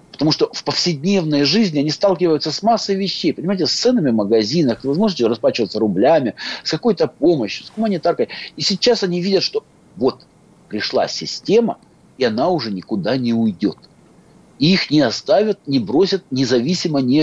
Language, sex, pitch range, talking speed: Russian, male, 120-180 Hz, 155 wpm